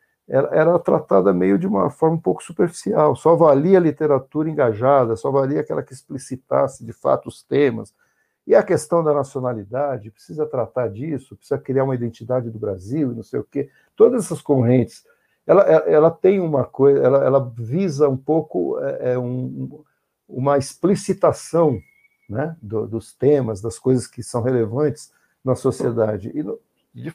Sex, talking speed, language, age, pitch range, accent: male, 160 wpm, Portuguese, 60-79, 120-165 Hz, Brazilian